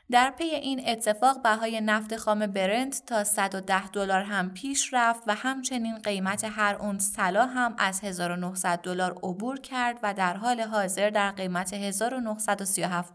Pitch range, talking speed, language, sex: 185-225 Hz, 150 wpm, Persian, female